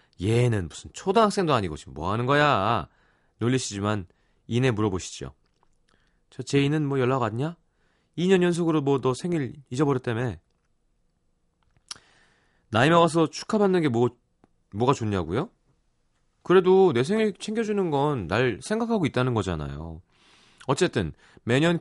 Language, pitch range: Korean, 100-145 Hz